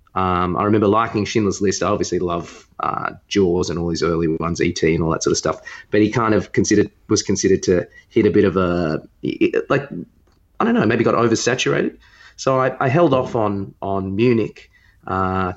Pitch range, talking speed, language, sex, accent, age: 95-110 Hz, 205 wpm, English, male, Australian, 30-49